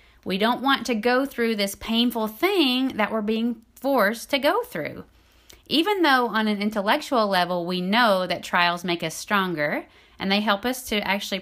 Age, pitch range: 30-49, 195-245 Hz